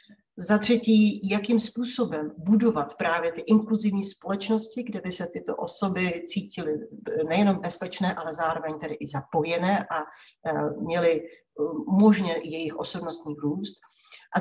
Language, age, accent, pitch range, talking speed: Czech, 40-59, native, 165-215 Hz, 120 wpm